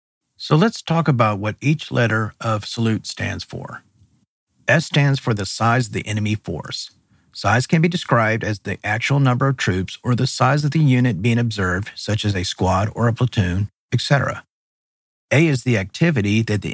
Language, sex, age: English, male, 50-69